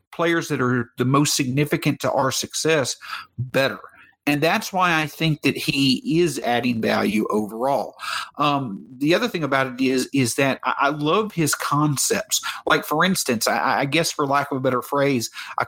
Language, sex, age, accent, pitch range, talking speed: English, male, 50-69, American, 130-160 Hz, 180 wpm